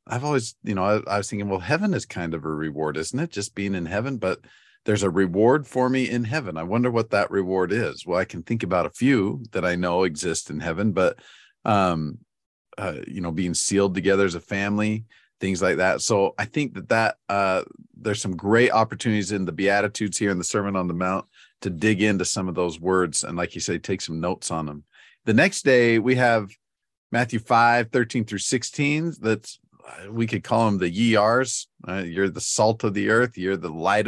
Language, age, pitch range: English, 40-59, 95-120 Hz